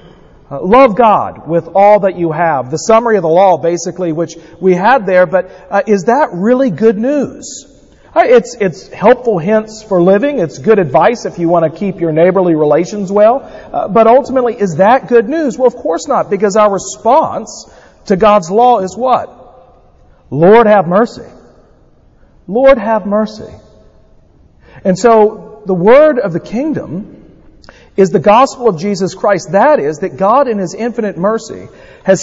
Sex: male